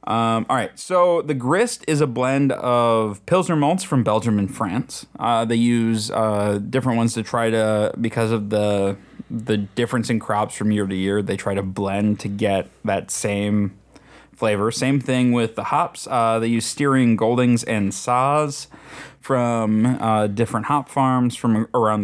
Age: 20-39